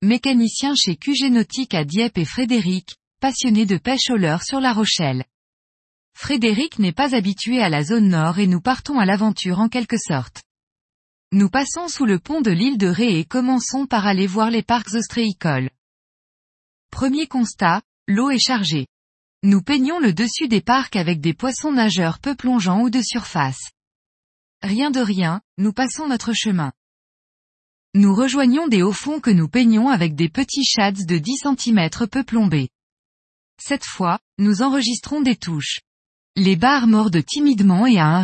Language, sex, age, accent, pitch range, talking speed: French, female, 20-39, French, 180-255 Hz, 165 wpm